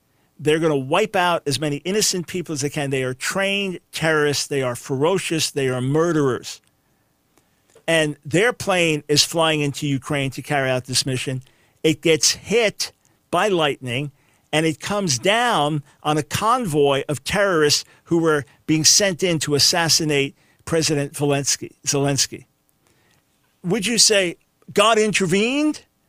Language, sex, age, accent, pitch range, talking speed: English, male, 50-69, American, 145-190 Hz, 145 wpm